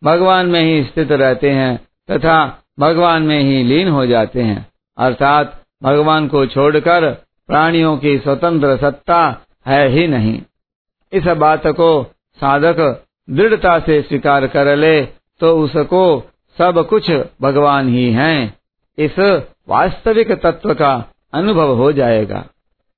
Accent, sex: native, male